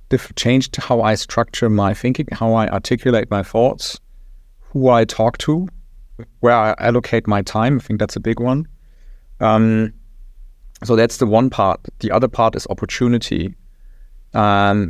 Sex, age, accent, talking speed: male, 30-49, German, 155 wpm